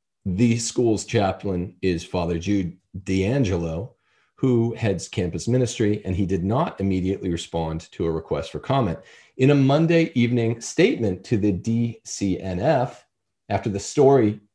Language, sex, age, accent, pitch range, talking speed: English, male, 40-59, American, 95-130 Hz, 135 wpm